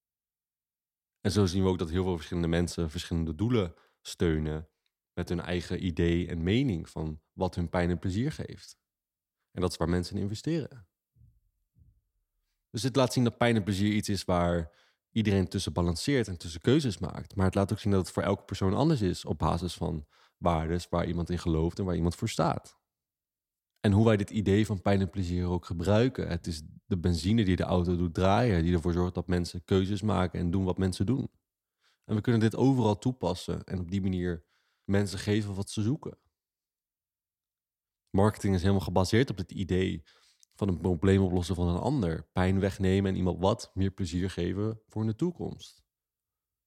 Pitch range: 90-105 Hz